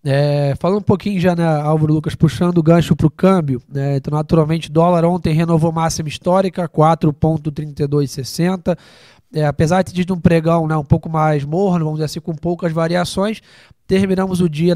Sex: male